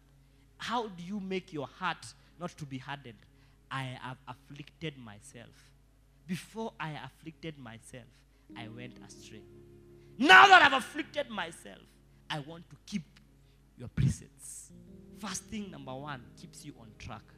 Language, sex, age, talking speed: English, male, 20-39, 135 wpm